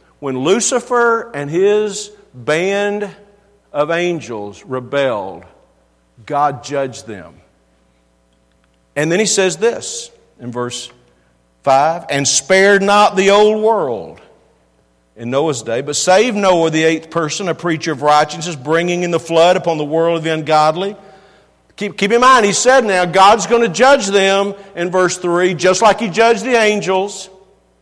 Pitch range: 150-205 Hz